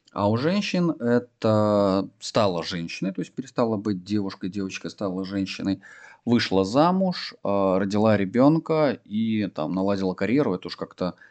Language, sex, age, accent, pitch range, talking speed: Russian, male, 30-49, native, 95-115 Hz, 135 wpm